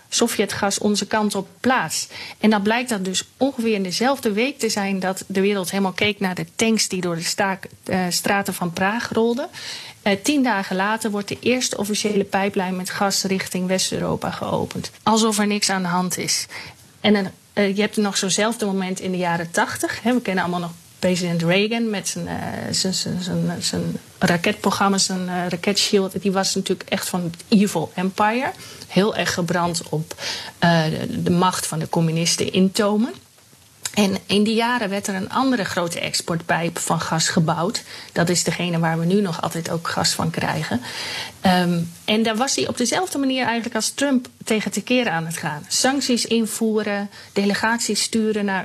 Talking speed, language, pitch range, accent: 190 wpm, Dutch, 180-215 Hz, Dutch